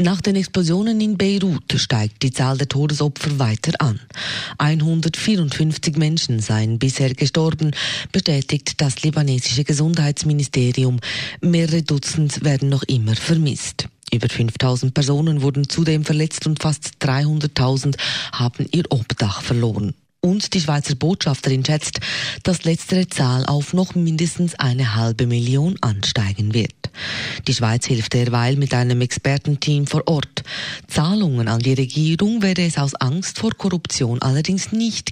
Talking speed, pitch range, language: 130 wpm, 125-160 Hz, German